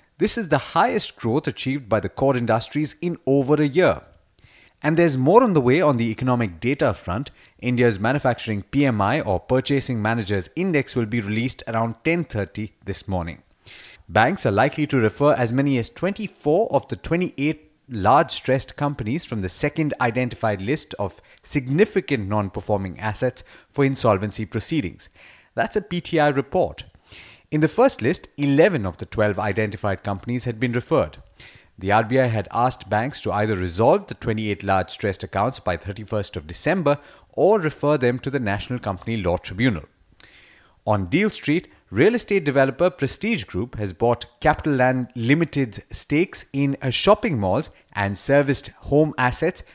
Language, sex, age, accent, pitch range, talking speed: English, male, 30-49, Indian, 105-145 Hz, 155 wpm